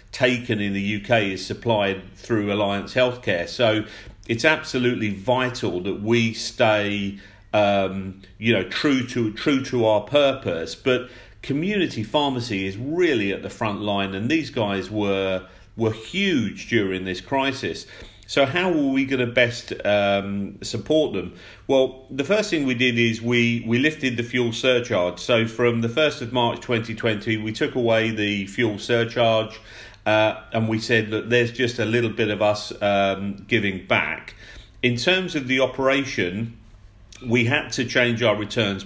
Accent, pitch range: British, 105-125 Hz